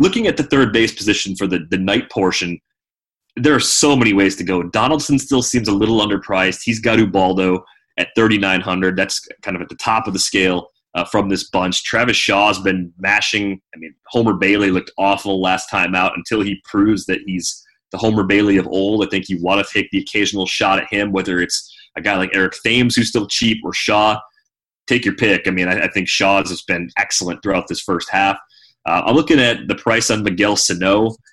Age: 30-49